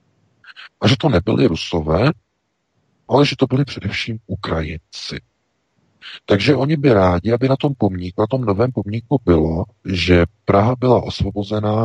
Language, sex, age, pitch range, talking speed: Czech, male, 50-69, 85-115 Hz, 140 wpm